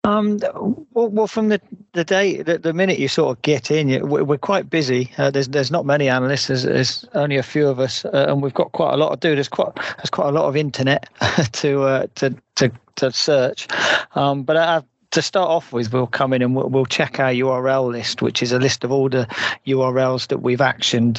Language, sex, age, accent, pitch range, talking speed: English, male, 40-59, British, 125-140 Hz, 235 wpm